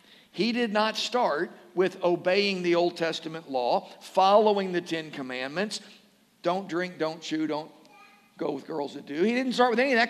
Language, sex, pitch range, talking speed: English, male, 175-230 Hz, 185 wpm